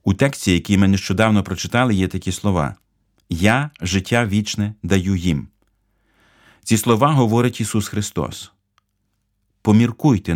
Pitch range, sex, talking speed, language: 95-115 Hz, male, 115 wpm, Ukrainian